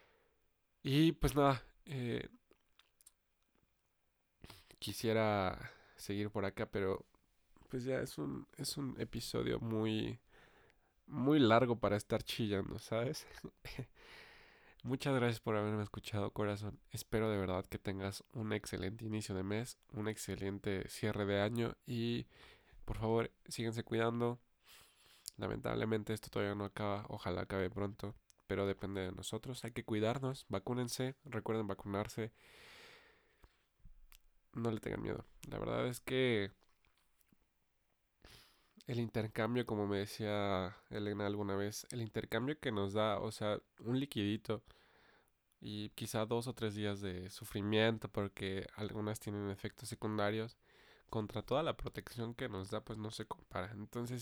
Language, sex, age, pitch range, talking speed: Spanish, male, 20-39, 100-120 Hz, 130 wpm